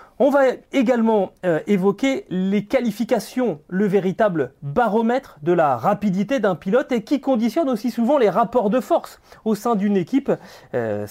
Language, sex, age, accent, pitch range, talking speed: French, male, 30-49, French, 170-230 Hz, 155 wpm